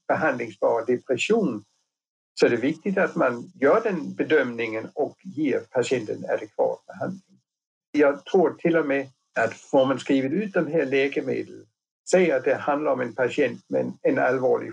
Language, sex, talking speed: Swedish, male, 160 wpm